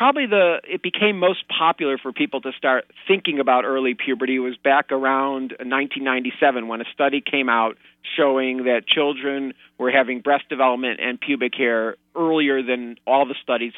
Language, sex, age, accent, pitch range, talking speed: English, male, 40-59, American, 120-145 Hz, 165 wpm